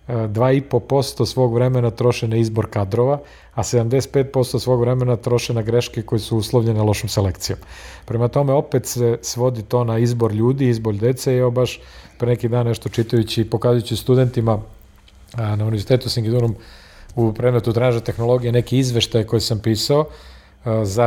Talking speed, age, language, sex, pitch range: 160 wpm, 40-59, Croatian, male, 110-125 Hz